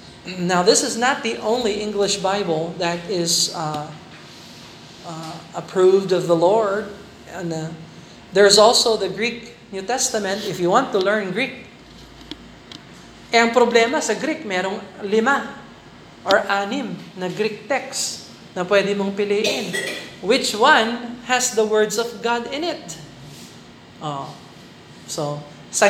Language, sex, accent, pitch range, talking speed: Filipino, male, native, 185-245 Hz, 135 wpm